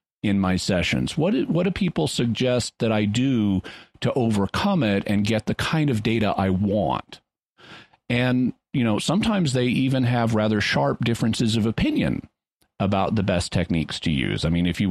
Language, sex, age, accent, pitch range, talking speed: English, male, 40-59, American, 90-115 Hz, 175 wpm